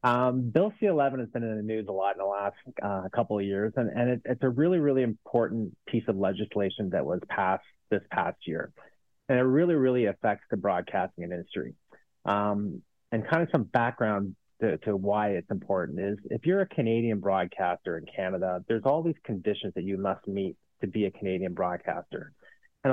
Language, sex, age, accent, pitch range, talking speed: English, male, 30-49, American, 95-120 Hz, 195 wpm